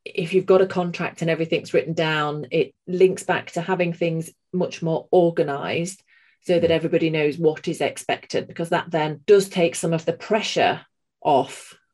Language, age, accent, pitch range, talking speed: English, 30-49, British, 155-185 Hz, 175 wpm